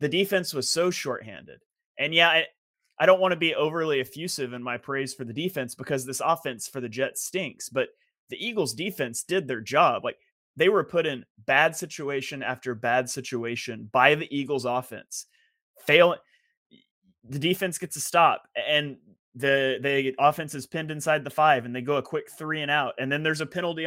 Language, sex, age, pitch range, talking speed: English, male, 30-49, 130-180 Hz, 195 wpm